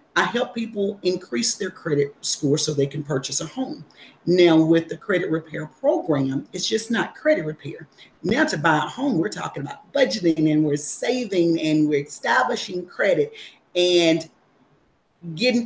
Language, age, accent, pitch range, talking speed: English, 40-59, American, 155-200 Hz, 160 wpm